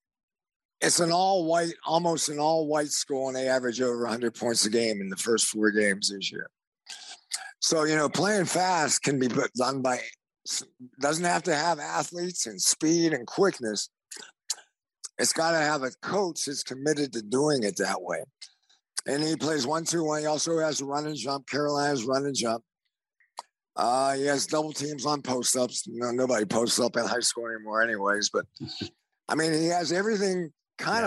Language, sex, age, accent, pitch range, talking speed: English, male, 50-69, American, 120-160 Hz, 185 wpm